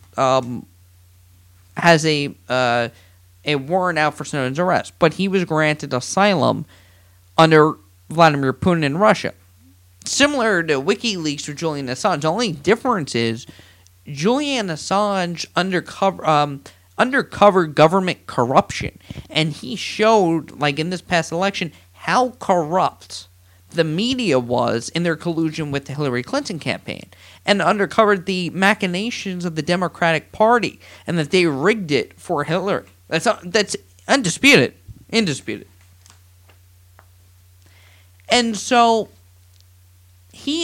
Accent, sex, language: American, male, English